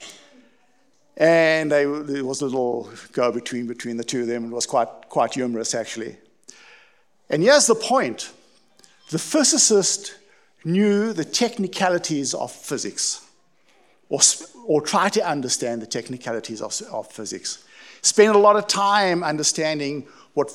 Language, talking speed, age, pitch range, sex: English, 135 wpm, 60-79, 135-210 Hz, male